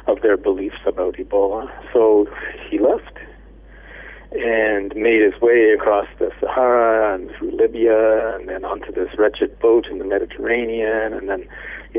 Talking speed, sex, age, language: 150 wpm, male, 50-69, English